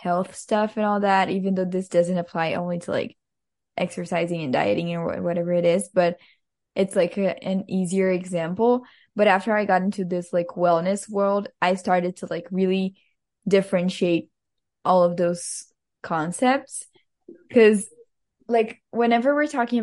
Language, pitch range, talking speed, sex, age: English, 180-210 Hz, 150 wpm, female, 10-29